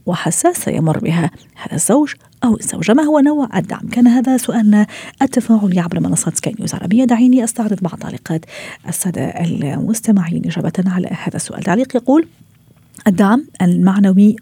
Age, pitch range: 40-59, 180-215 Hz